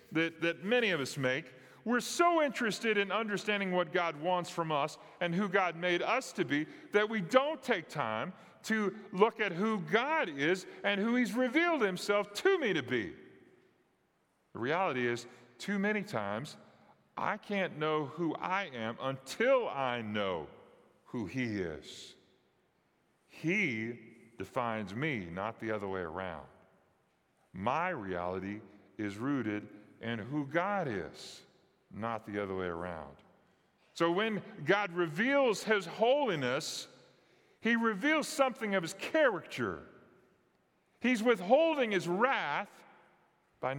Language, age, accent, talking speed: English, 40-59, American, 135 wpm